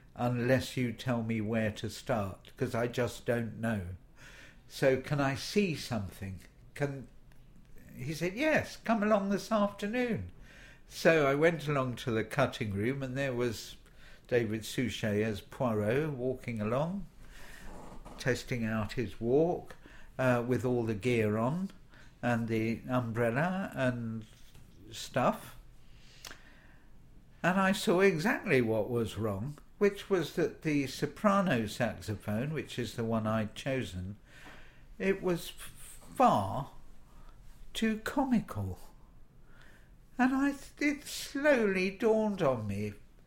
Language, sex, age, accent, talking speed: English, male, 60-79, British, 120 wpm